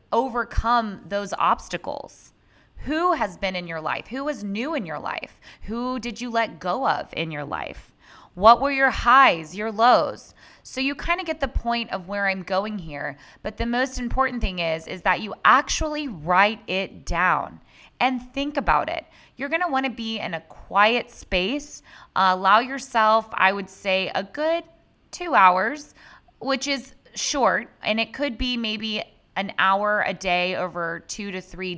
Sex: female